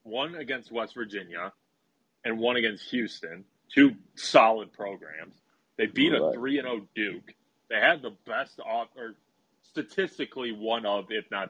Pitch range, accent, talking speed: 105-130 Hz, American, 150 wpm